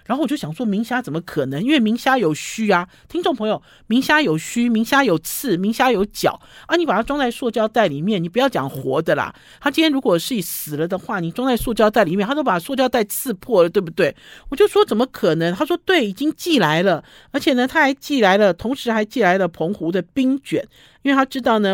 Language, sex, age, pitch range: Chinese, male, 50-69, 175-255 Hz